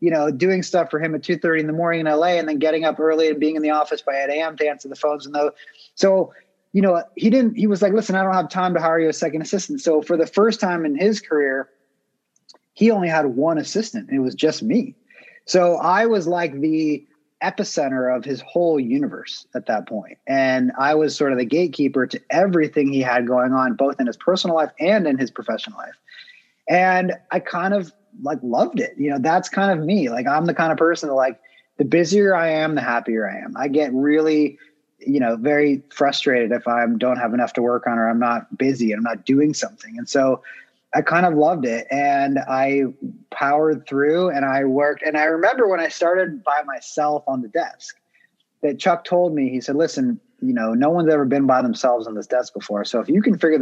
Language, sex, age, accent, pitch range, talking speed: English, male, 30-49, American, 135-180 Hz, 235 wpm